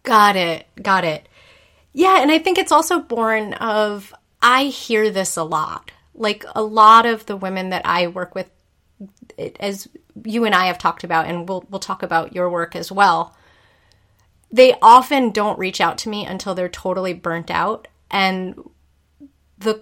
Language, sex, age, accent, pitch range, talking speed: English, female, 30-49, American, 175-215 Hz, 175 wpm